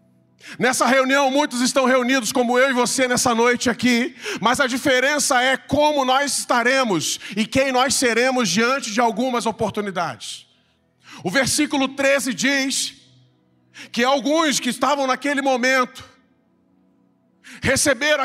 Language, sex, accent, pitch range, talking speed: Portuguese, male, Brazilian, 220-270 Hz, 125 wpm